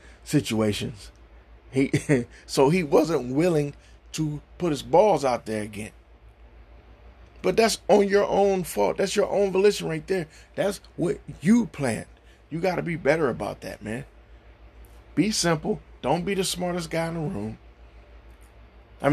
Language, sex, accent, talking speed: English, male, American, 150 wpm